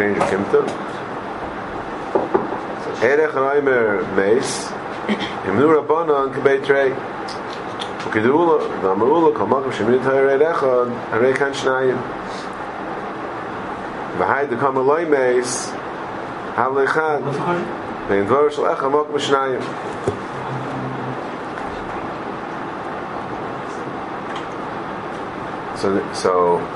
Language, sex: English, male